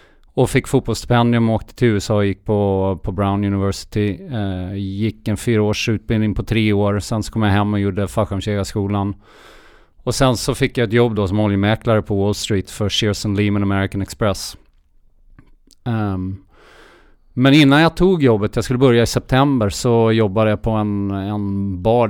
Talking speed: 175 wpm